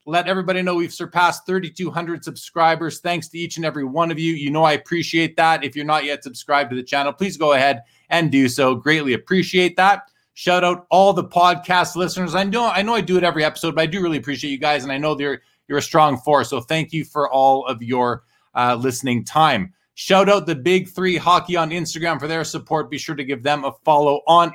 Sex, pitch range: male, 145-185 Hz